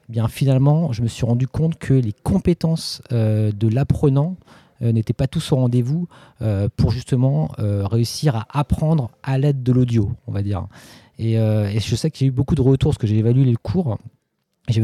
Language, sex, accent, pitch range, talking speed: French, male, French, 115-140 Hz, 205 wpm